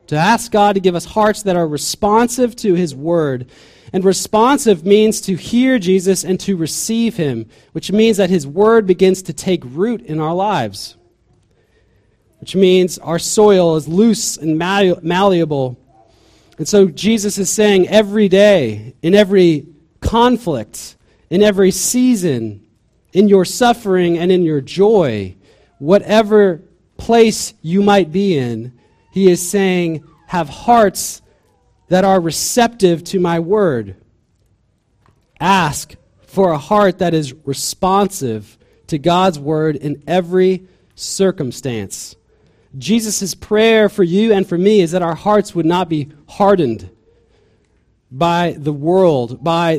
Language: English